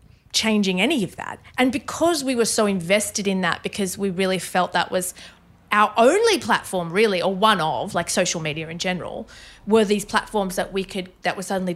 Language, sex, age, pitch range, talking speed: English, female, 30-49, 175-210 Hz, 200 wpm